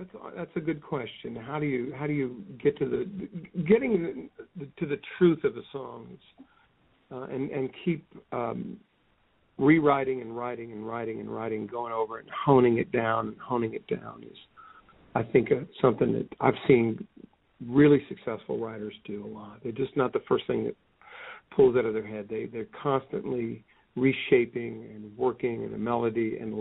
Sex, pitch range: male, 115-165 Hz